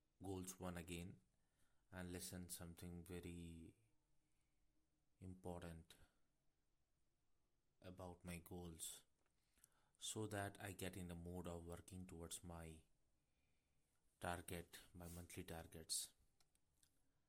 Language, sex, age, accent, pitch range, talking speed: Hindi, male, 30-49, native, 85-100 Hz, 90 wpm